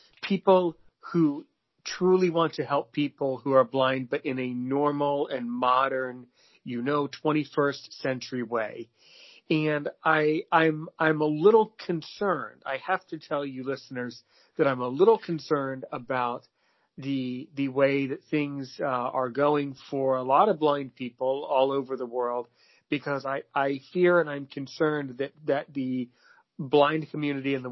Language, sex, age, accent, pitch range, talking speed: English, male, 40-59, American, 130-155 Hz, 160 wpm